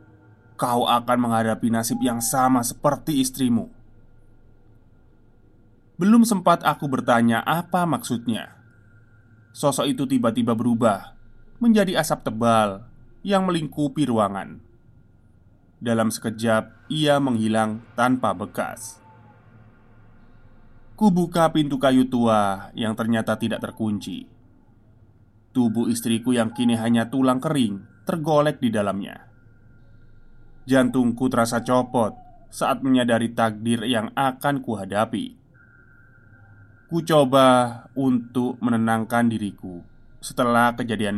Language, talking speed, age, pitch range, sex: Indonesian, 90 wpm, 20-39, 110-130 Hz, male